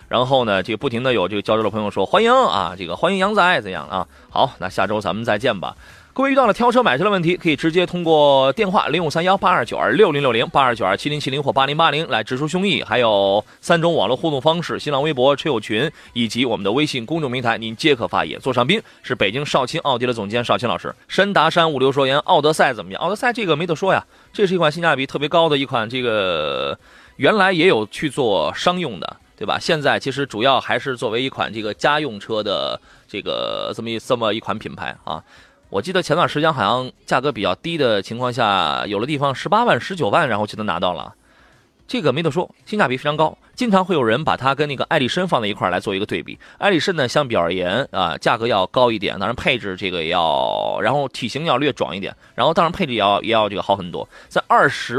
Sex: male